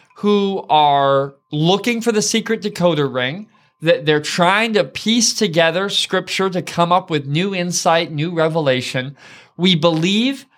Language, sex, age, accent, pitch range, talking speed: English, male, 20-39, American, 145-195 Hz, 140 wpm